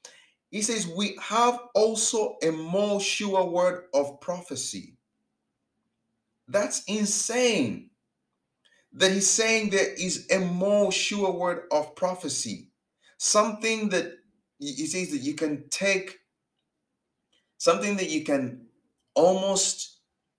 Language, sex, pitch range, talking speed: English, male, 150-200 Hz, 110 wpm